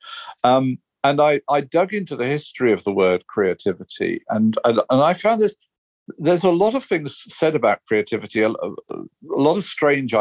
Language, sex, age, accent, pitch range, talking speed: German, male, 50-69, British, 100-145 Hz, 180 wpm